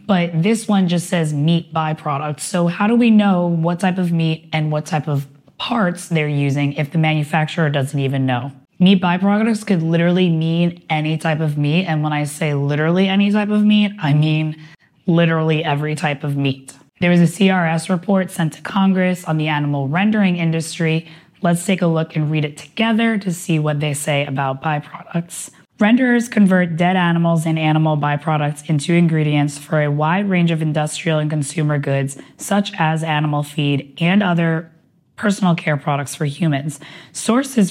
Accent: American